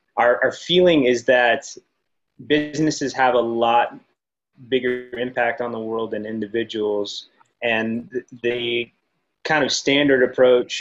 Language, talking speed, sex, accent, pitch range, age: English, 120 wpm, male, American, 105-125 Hz, 20-39